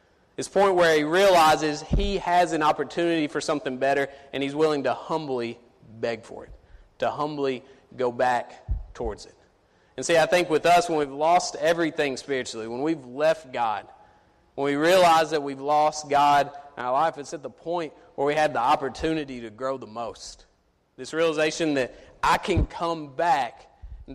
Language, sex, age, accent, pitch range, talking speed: English, male, 30-49, American, 135-170 Hz, 180 wpm